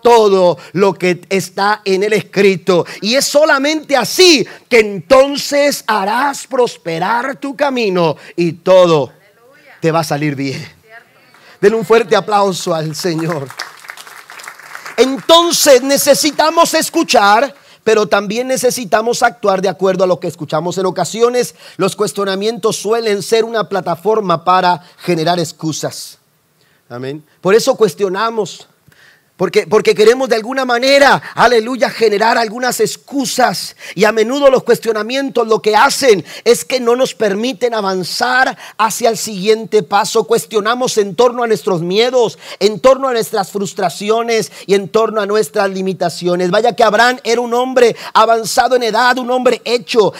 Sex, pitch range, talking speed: male, 190-250 Hz, 135 wpm